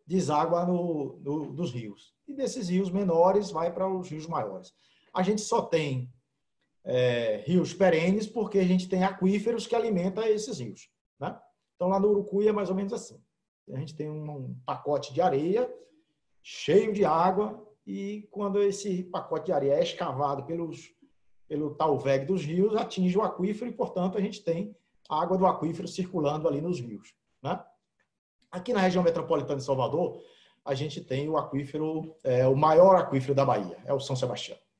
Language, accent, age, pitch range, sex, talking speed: Portuguese, Brazilian, 50-69, 140-195 Hz, male, 175 wpm